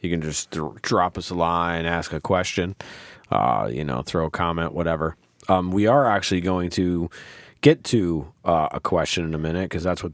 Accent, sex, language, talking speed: American, male, English, 205 wpm